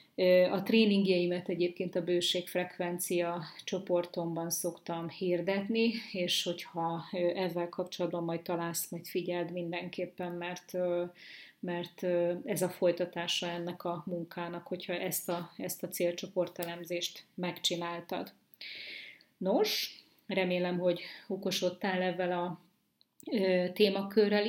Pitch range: 175-185 Hz